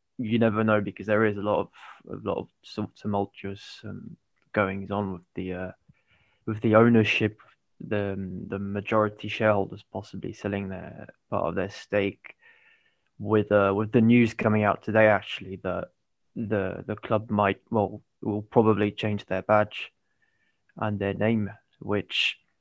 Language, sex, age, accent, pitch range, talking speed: English, male, 20-39, British, 100-115 Hz, 155 wpm